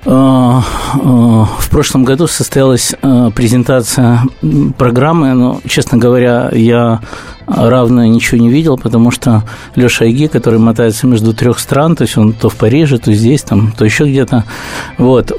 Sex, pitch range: male, 110-130 Hz